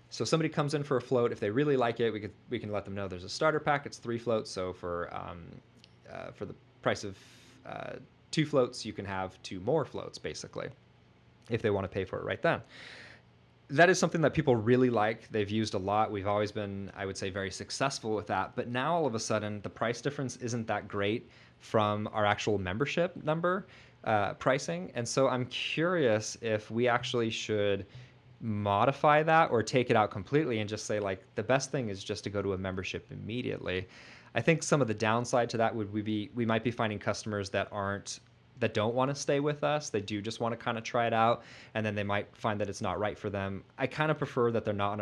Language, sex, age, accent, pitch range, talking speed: English, male, 20-39, American, 100-125 Hz, 230 wpm